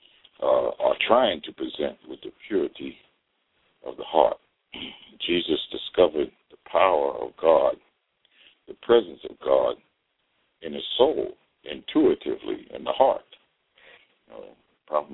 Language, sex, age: English, male, 60-79